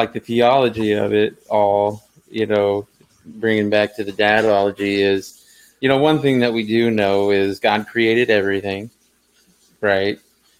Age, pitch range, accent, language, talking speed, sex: 30-49, 100-115 Hz, American, English, 155 wpm, male